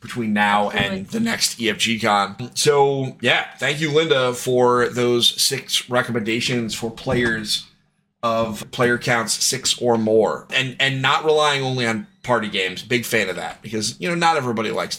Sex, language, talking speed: male, English, 170 wpm